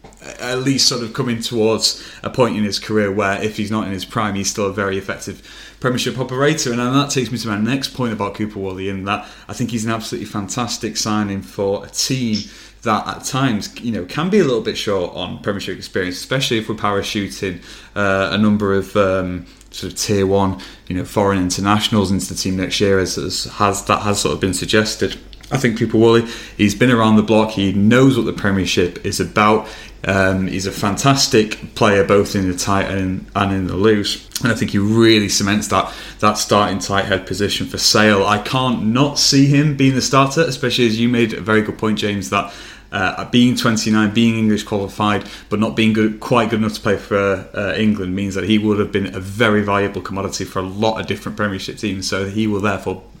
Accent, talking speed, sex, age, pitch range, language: British, 220 wpm, male, 20-39, 100-115 Hz, English